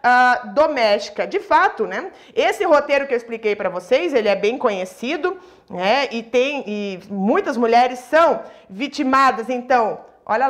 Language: Portuguese